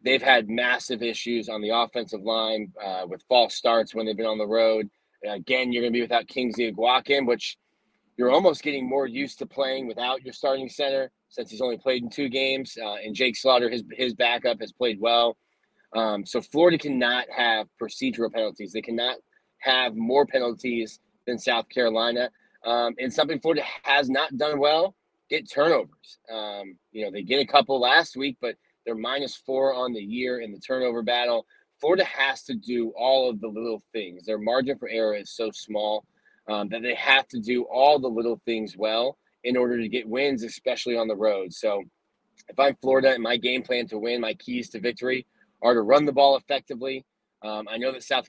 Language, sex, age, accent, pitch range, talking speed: English, male, 20-39, American, 115-135 Hz, 200 wpm